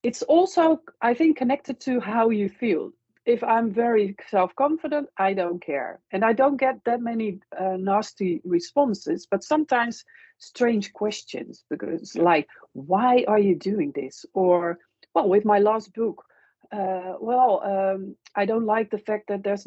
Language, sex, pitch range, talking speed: Dutch, female, 195-285 Hz, 160 wpm